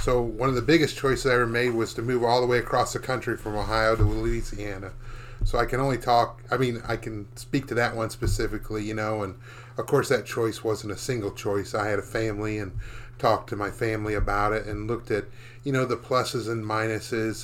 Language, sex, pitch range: English, male, 110-125 Hz